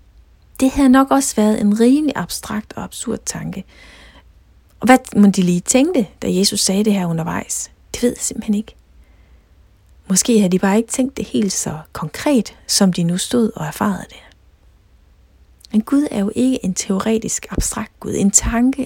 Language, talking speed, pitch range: Danish, 175 wpm, 165-230 Hz